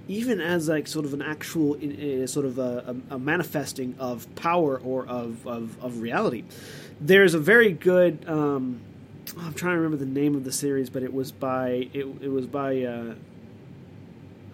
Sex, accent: male, American